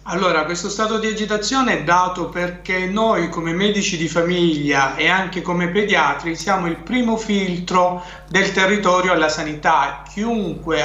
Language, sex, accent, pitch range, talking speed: Italian, male, native, 165-205 Hz, 145 wpm